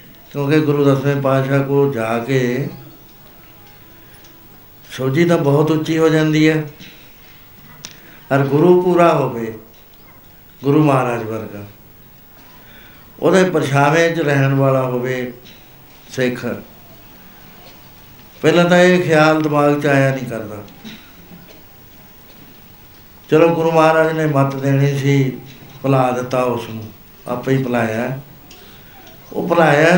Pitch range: 125-155 Hz